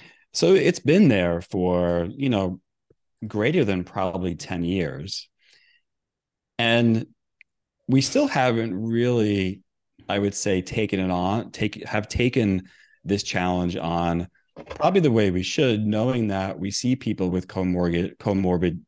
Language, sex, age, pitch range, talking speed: English, male, 30-49, 85-115 Hz, 135 wpm